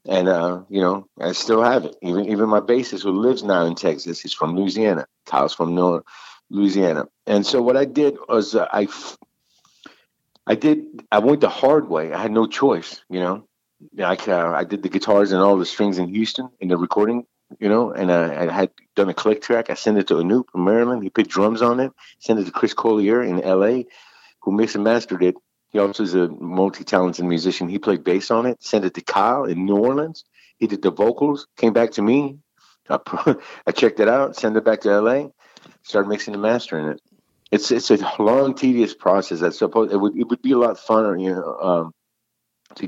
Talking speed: 220 wpm